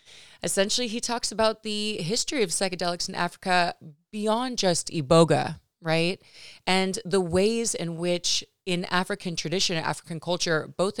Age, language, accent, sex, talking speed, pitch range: 30-49, English, American, female, 135 wpm, 155-195 Hz